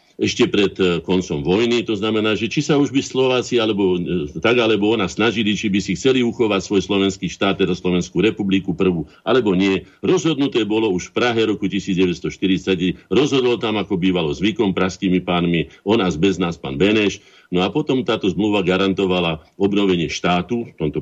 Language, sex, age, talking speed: Slovak, male, 50-69, 175 wpm